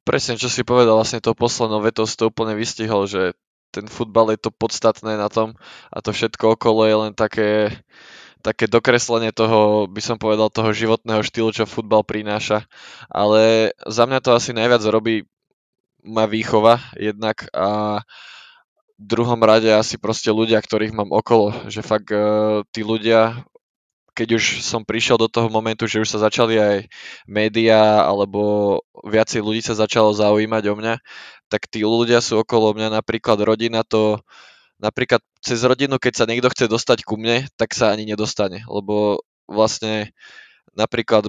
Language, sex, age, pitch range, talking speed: Slovak, male, 10-29, 105-115 Hz, 160 wpm